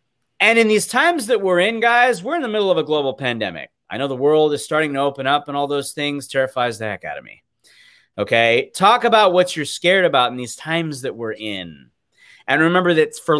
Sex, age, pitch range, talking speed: male, 30-49, 140-225 Hz, 235 wpm